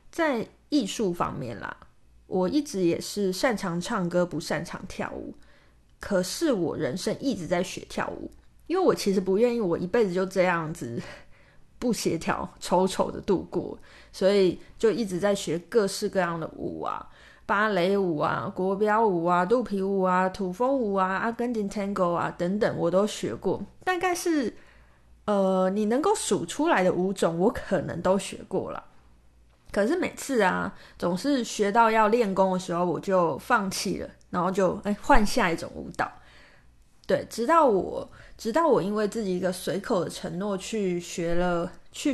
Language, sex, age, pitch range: Chinese, female, 20-39, 180-230 Hz